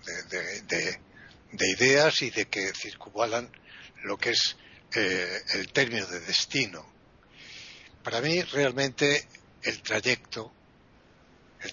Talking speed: 115 wpm